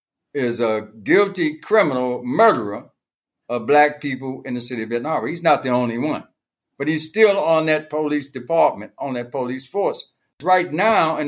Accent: American